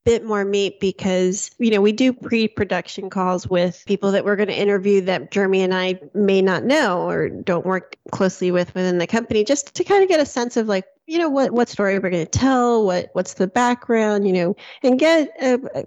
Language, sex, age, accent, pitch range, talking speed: English, female, 30-49, American, 185-230 Hz, 225 wpm